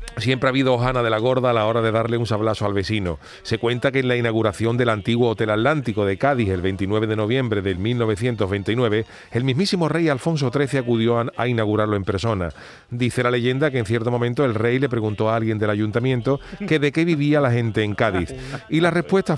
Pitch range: 110-135 Hz